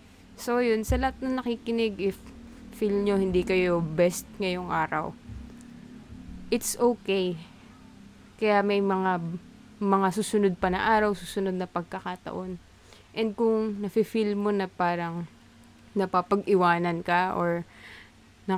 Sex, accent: female, Filipino